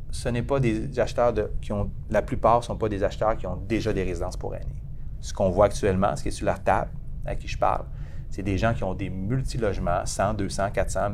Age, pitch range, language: 30-49, 105-125 Hz, French